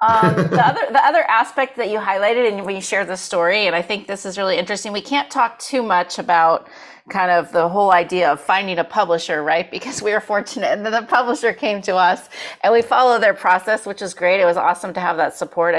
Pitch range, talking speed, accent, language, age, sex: 165-220 Hz, 240 wpm, American, English, 30-49, female